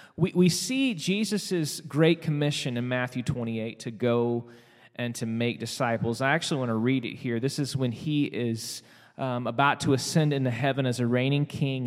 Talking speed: 180 wpm